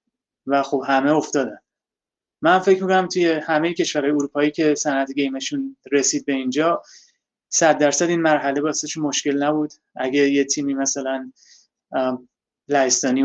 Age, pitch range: 20-39, 130-155 Hz